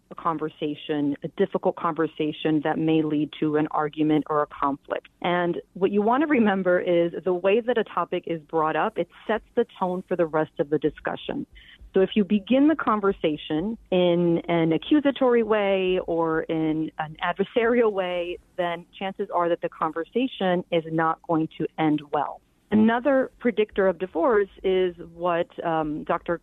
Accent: American